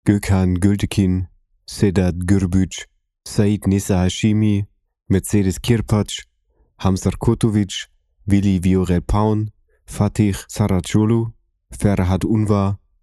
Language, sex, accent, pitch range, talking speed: German, male, German, 90-110 Hz, 80 wpm